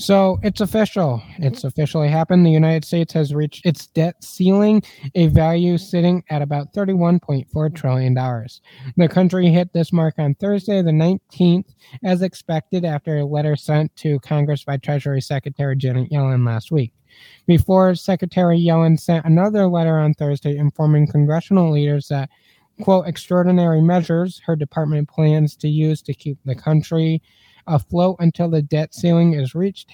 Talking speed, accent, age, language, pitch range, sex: 150 wpm, American, 20-39, English, 145-175 Hz, male